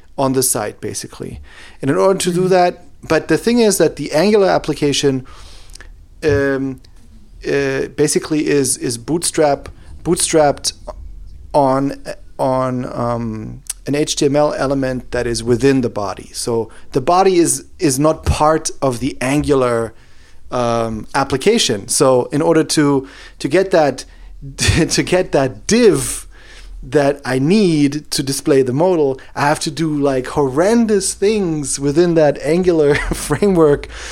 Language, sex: English, male